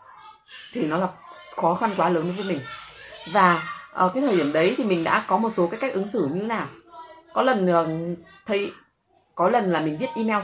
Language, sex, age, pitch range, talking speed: Vietnamese, female, 20-39, 165-230 Hz, 215 wpm